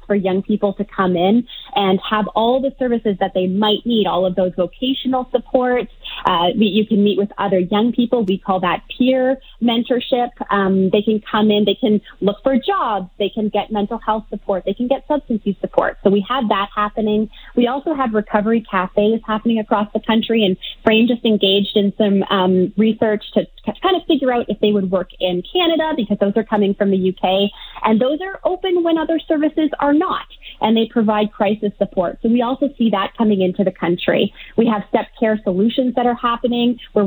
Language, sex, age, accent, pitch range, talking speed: English, female, 20-39, American, 200-245 Hz, 205 wpm